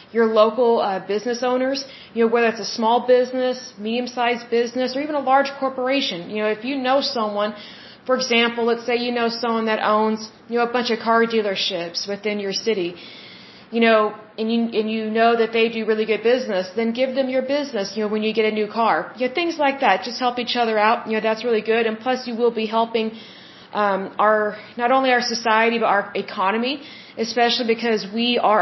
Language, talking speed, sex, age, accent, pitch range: Hindi, 220 wpm, female, 20-39, American, 215-245 Hz